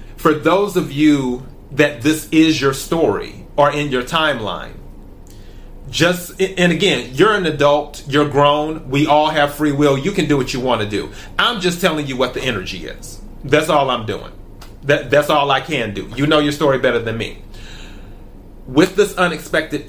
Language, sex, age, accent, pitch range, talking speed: English, male, 30-49, American, 115-155 Hz, 185 wpm